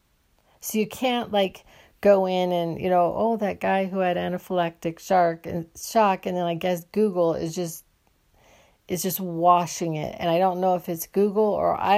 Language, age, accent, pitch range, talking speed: English, 50-69, American, 165-190 Hz, 180 wpm